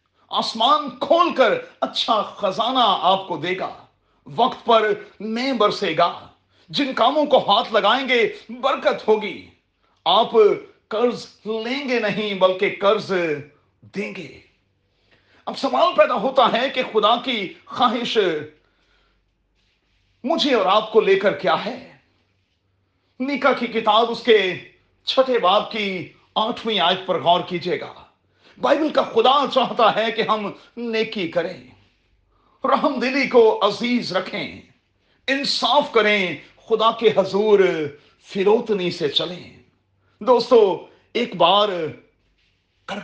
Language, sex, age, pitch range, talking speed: Urdu, male, 40-59, 150-235 Hz, 120 wpm